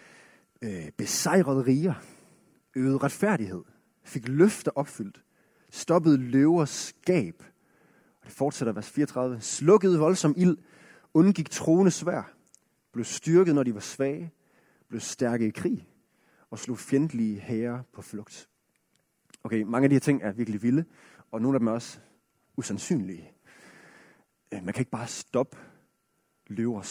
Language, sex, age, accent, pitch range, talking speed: Danish, male, 30-49, native, 125-175 Hz, 125 wpm